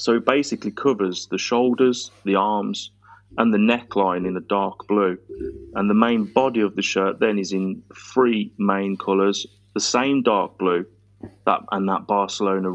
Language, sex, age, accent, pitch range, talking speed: English, male, 30-49, British, 95-115 Hz, 170 wpm